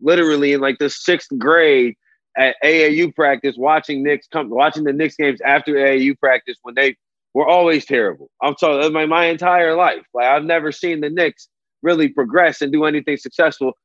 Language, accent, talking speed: English, American, 180 wpm